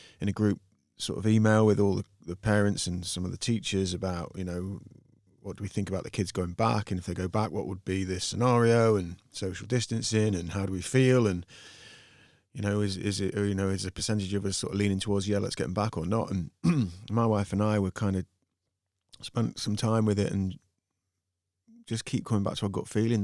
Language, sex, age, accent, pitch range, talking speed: English, male, 30-49, British, 95-105 Hz, 240 wpm